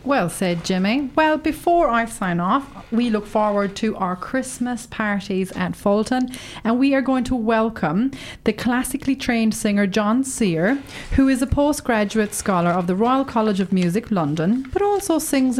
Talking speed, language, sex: 170 wpm, English, female